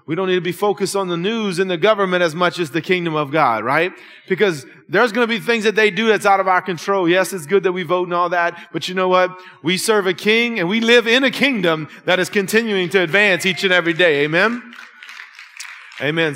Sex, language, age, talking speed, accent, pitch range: male, English, 30-49, 250 wpm, American, 170-215 Hz